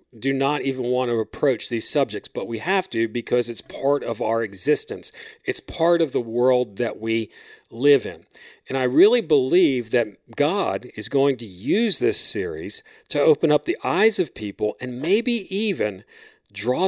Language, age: English, 40-59